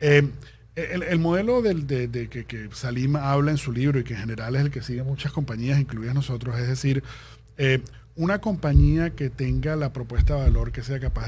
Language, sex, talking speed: Spanish, male, 215 wpm